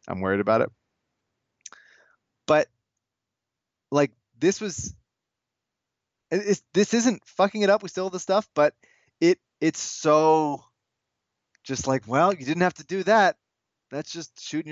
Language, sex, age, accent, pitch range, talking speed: English, male, 20-39, American, 110-150 Hz, 145 wpm